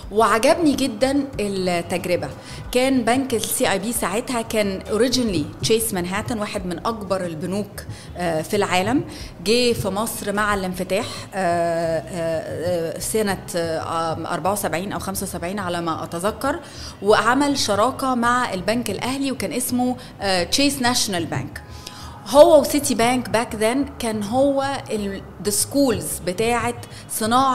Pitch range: 180-245 Hz